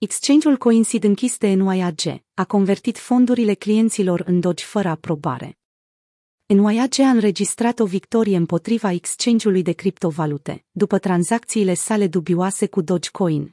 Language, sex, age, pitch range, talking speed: Romanian, female, 30-49, 180-225 Hz, 120 wpm